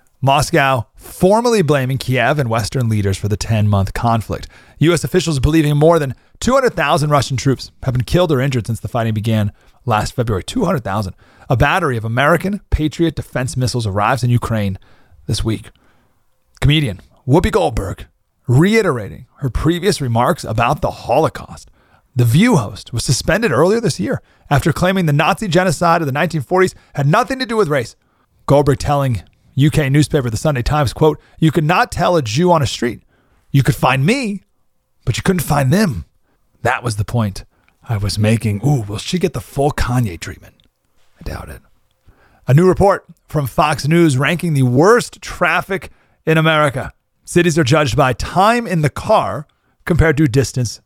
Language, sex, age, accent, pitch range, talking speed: English, male, 30-49, American, 120-165 Hz, 170 wpm